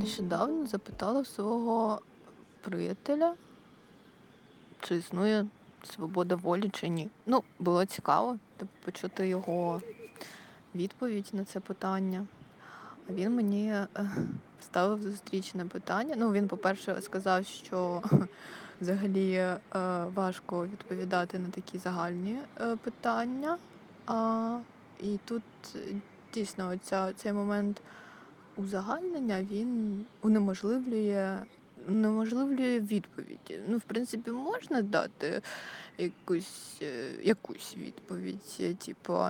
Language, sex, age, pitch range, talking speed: Russian, female, 20-39, 190-235 Hz, 85 wpm